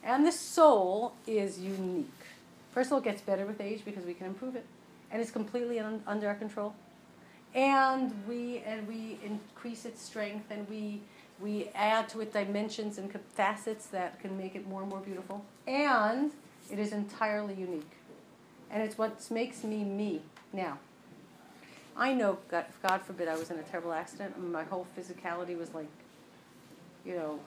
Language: English